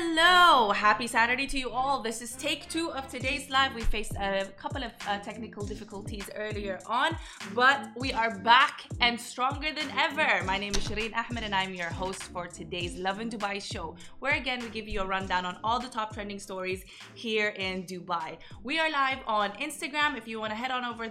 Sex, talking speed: female, 210 wpm